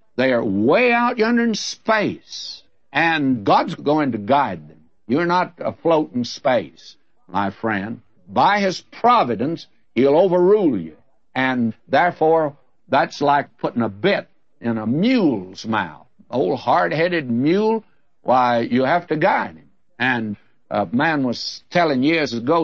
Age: 60-79